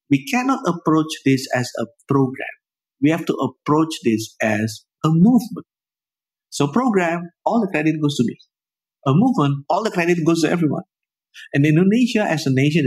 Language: English